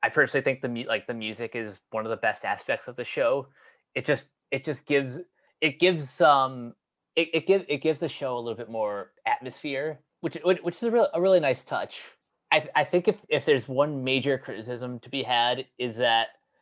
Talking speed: 215 wpm